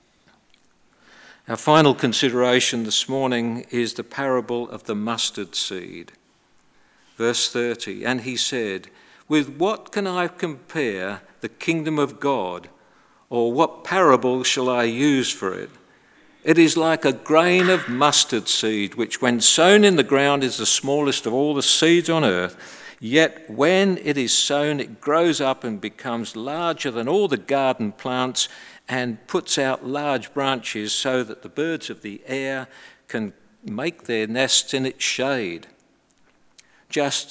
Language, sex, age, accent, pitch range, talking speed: English, male, 50-69, British, 125-170 Hz, 150 wpm